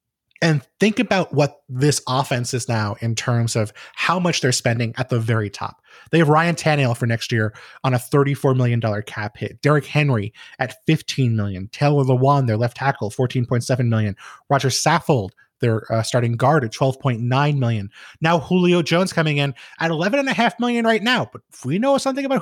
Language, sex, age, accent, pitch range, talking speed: English, male, 30-49, American, 125-165 Hz, 185 wpm